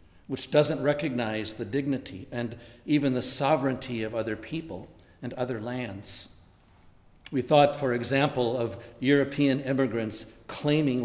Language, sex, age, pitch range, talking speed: English, male, 50-69, 110-145 Hz, 125 wpm